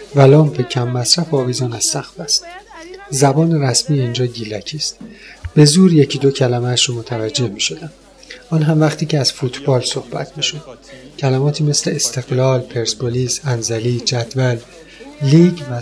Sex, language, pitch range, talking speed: male, Persian, 120-145 Hz, 150 wpm